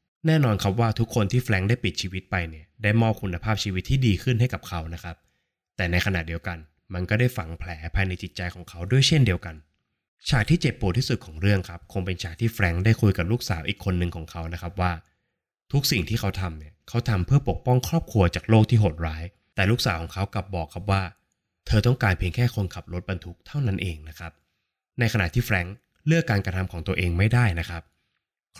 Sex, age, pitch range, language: male, 20-39, 85-110 Hz, Thai